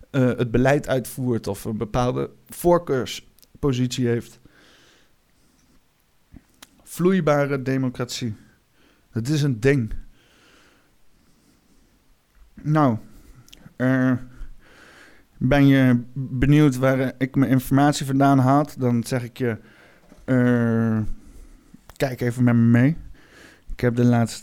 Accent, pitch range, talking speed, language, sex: Dutch, 115-130 Hz, 100 wpm, Dutch, male